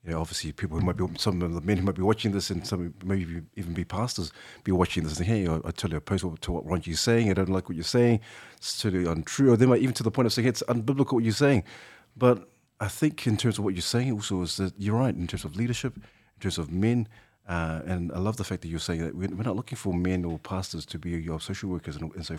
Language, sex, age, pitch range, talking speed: English, male, 30-49, 90-115 Hz, 280 wpm